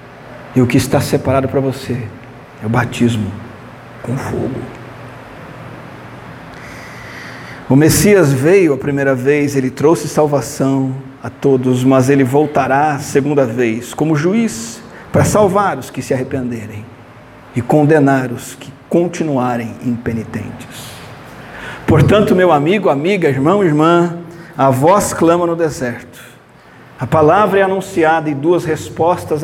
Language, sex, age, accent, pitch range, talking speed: Portuguese, male, 50-69, Brazilian, 125-150 Hz, 125 wpm